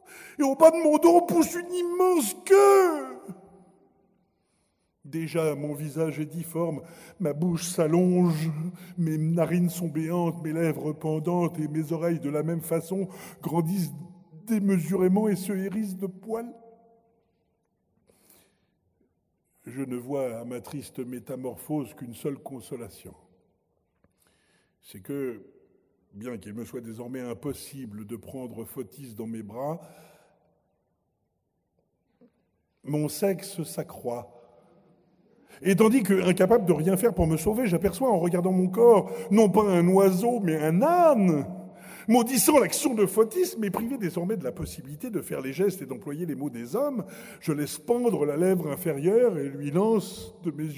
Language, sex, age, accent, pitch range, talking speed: French, male, 60-79, French, 150-200 Hz, 140 wpm